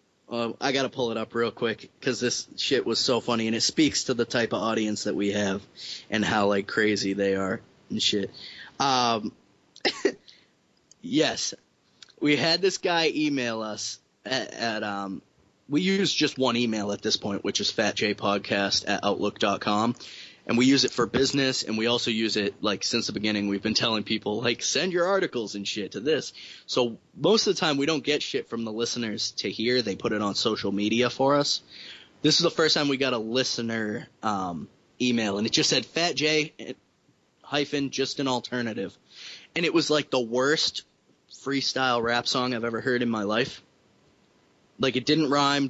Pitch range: 110-135 Hz